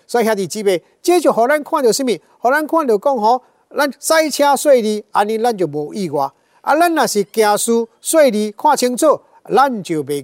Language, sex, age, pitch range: Chinese, male, 50-69, 170-230 Hz